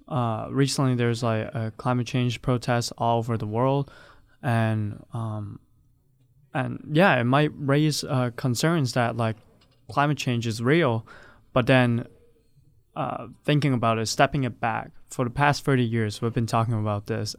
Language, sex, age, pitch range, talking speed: English, male, 20-39, 115-130 Hz, 160 wpm